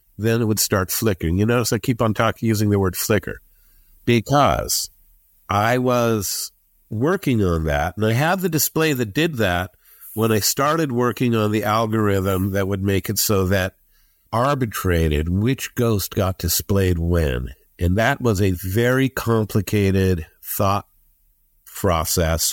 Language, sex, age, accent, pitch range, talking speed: English, male, 50-69, American, 95-130 Hz, 150 wpm